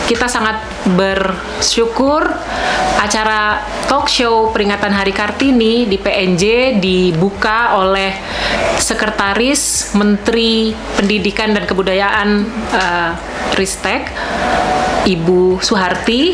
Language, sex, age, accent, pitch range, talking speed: Indonesian, female, 30-49, native, 195-230 Hz, 80 wpm